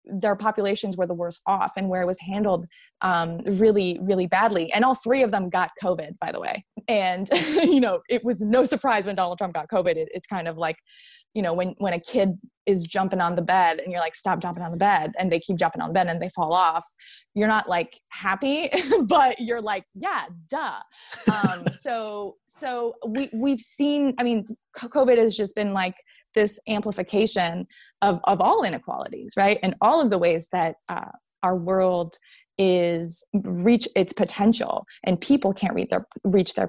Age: 20-39